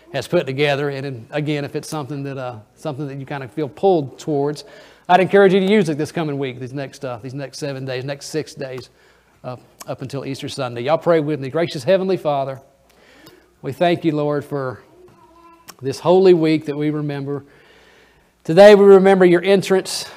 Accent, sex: American, male